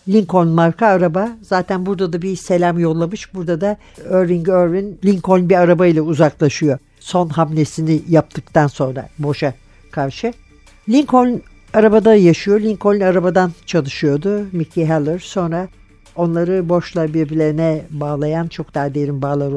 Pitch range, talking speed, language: 160-205 Hz, 125 wpm, Turkish